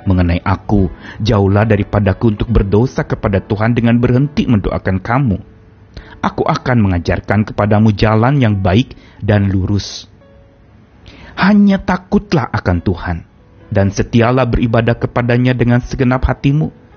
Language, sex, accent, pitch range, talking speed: Indonesian, male, native, 95-120 Hz, 115 wpm